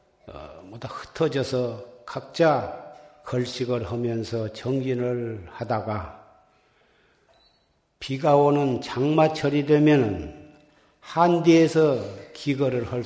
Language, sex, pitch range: Korean, male, 110-135 Hz